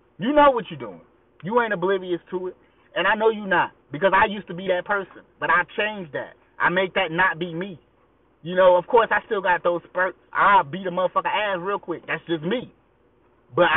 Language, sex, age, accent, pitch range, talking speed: English, male, 30-49, American, 175-235 Hz, 225 wpm